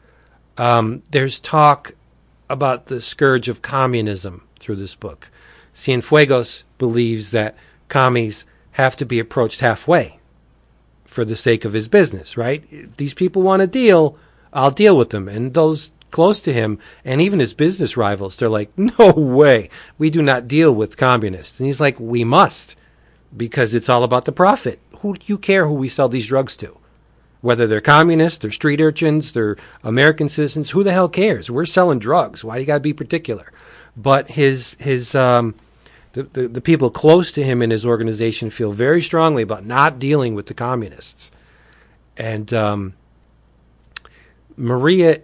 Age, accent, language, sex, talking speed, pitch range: 40-59, American, English, male, 165 wpm, 110-150 Hz